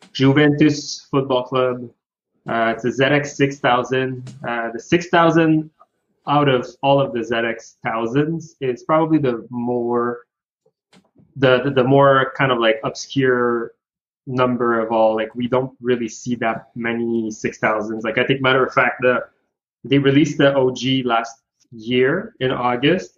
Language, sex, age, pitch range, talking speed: English, male, 20-39, 120-140 Hz, 150 wpm